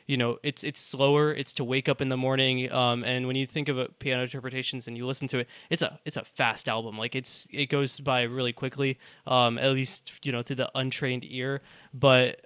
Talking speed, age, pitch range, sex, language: 230 wpm, 20-39, 125-140 Hz, male, English